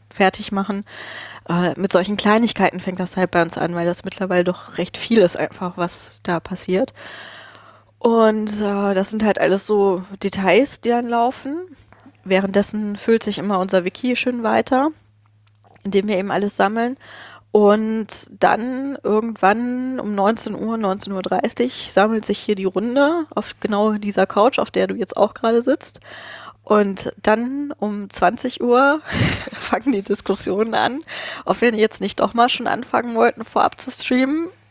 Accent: German